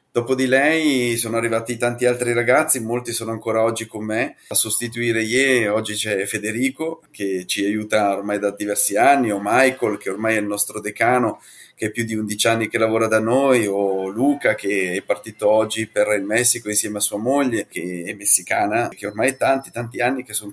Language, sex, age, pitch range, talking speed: Italian, male, 30-49, 110-130 Hz, 200 wpm